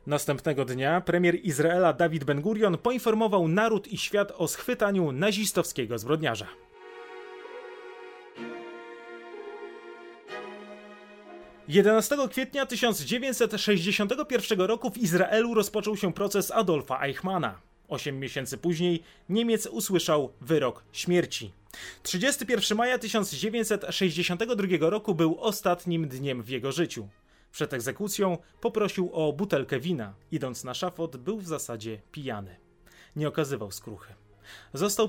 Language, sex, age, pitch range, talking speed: Polish, male, 30-49, 140-210 Hz, 100 wpm